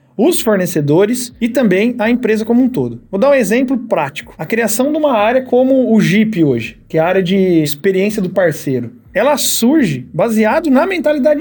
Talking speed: 190 wpm